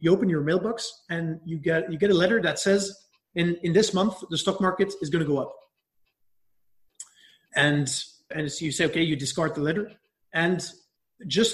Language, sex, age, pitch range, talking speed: English, male, 30-49, 160-195 Hz, 200 wpm